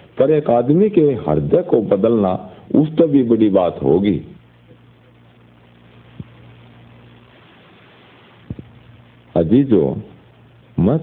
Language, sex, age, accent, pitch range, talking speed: Hindi, male, 50-69, native, 90-130 Hz, 75 wpm